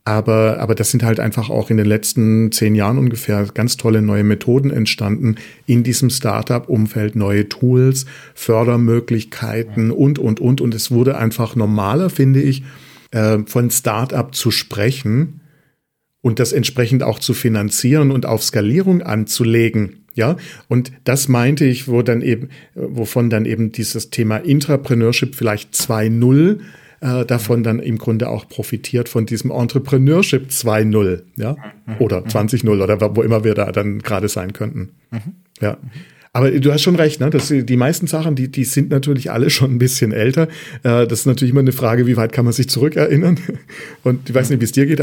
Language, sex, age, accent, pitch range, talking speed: German, male, 40-59, German, 110-135 Hz, 170 wpm